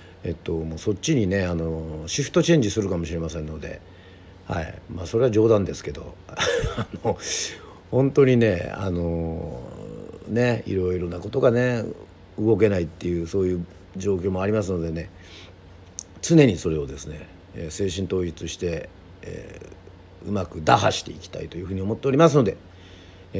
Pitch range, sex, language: 85-110 Hz, male, Japanese